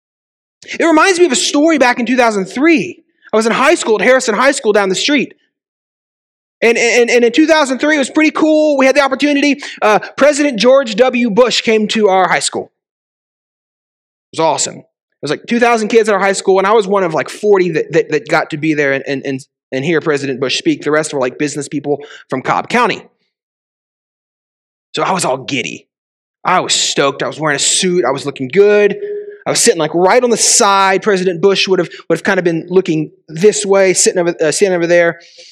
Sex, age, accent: male, 30-49, American